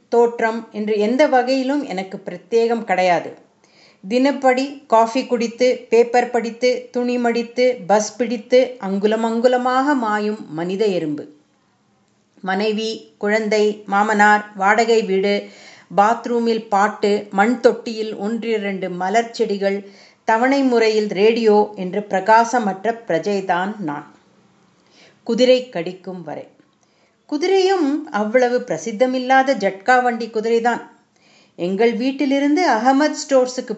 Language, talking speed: Tamil, 95 wpm